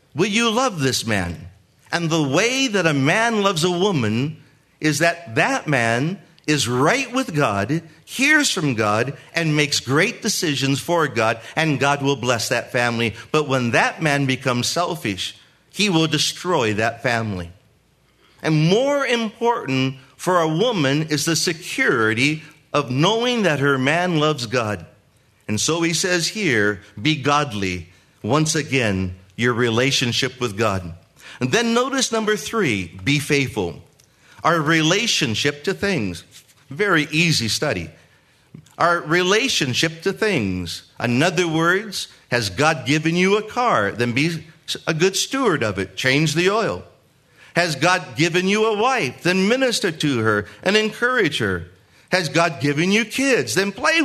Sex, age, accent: male, 50-69, American